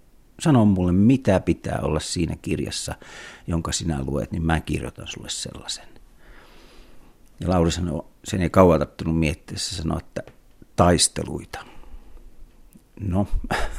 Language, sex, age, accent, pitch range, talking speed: Finnish, male, 50-69, native, 75-90 Hz, 115 wpm